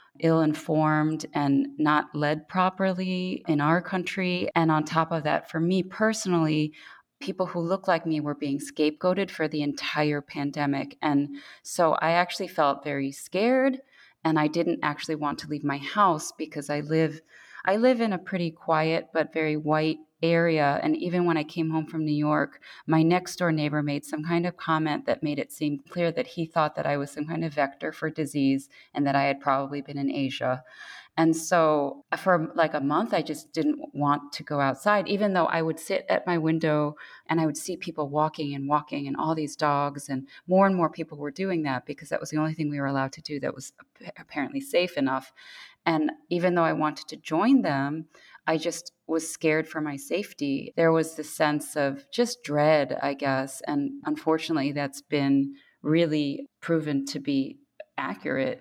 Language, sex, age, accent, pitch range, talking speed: English, female, 30-49, American, 145-175 Hz, 195 wpm